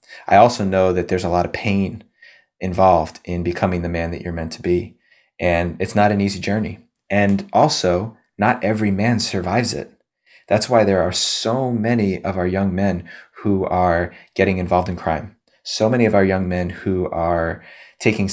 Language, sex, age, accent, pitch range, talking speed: English, male, 30-49, American, 90-110 Hz, 185 wpm